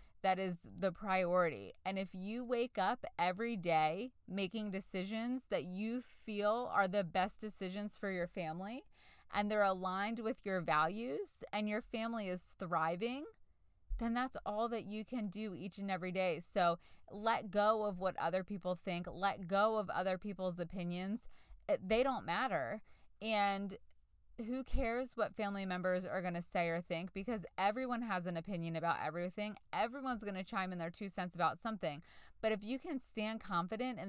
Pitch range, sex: 180-225 Hz, female